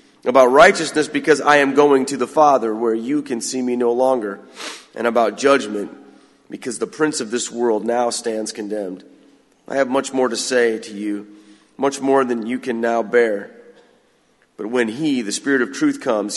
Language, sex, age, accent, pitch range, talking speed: English, male, 30-49, American, 110-145 Hz, 185 wpm